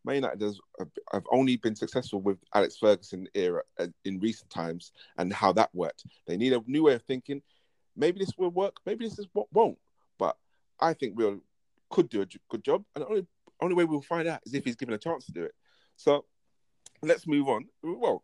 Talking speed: 210 wpm